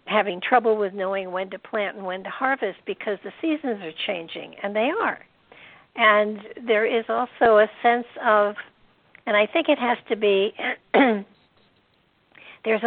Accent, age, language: American, 60-79, English